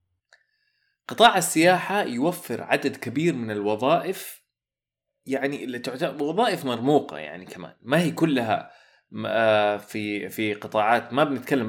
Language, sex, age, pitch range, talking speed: Arabic, male, 30-49, 105-145 Hz, 105 wpm